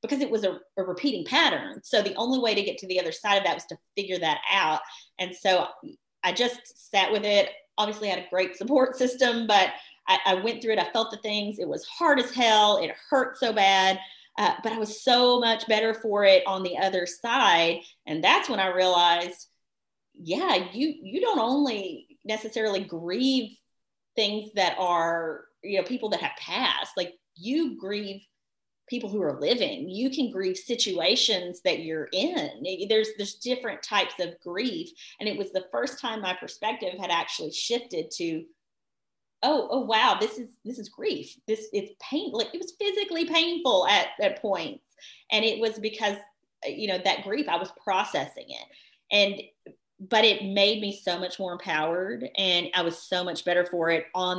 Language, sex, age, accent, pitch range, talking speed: English, female, 30-49, American, 185-250 Hz, 190 wpm